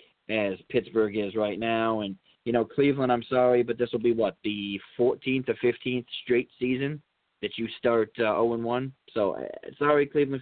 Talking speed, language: 180 wpm, English